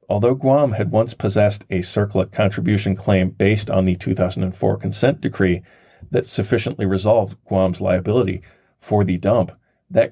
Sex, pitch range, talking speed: male, 95-115 Hz, 140 wpm